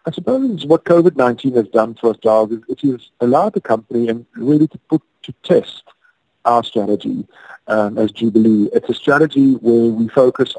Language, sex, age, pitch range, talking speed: English, male, 40-59, 115-135 Hz, 180 wpm